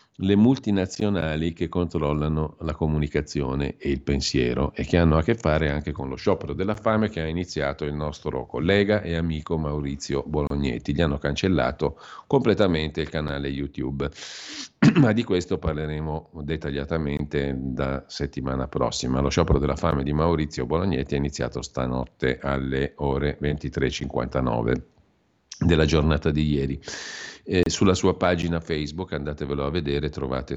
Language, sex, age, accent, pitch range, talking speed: Italian, male, 50-69, native, 70-80 Hz, 140 wpm